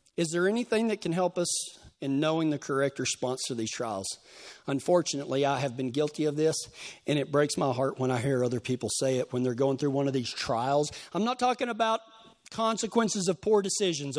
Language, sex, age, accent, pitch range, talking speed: English, male, 40-59, American, 150-230 Hz, 210 wpm